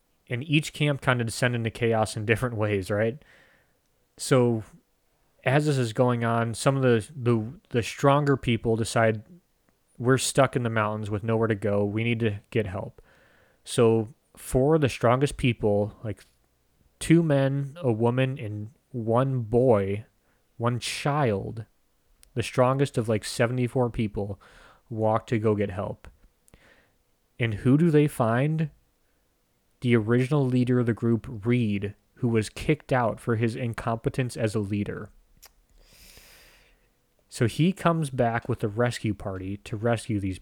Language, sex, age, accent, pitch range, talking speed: English, male, 30-49, American, 110-130 Hz, 145 wpm